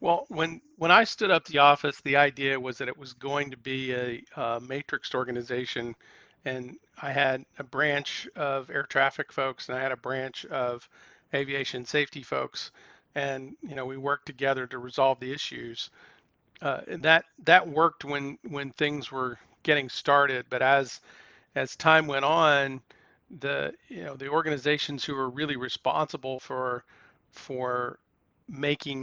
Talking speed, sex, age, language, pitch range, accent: 160 wpm, male, 40-59, English, 130-145 Hz, American